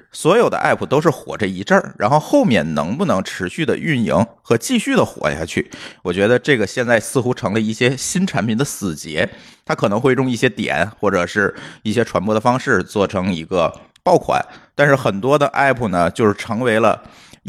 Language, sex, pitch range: Chinese, male, 90-125 Hz